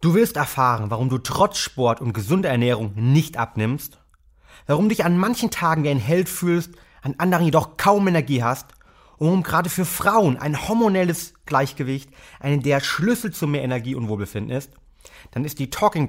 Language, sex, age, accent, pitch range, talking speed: German, male, 30-49, German, 115-160 Hz, 170 wpm